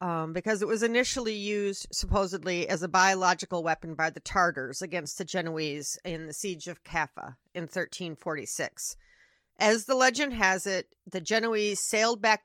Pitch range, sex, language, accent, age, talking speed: 170-215 Hz, female, English, American, 40-59, 160 wpm